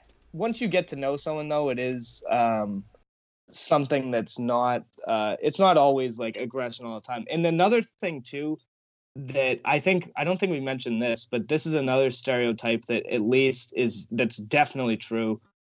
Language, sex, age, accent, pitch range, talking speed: English, male, 20-39, American, 120-150 Hz, 180 wpm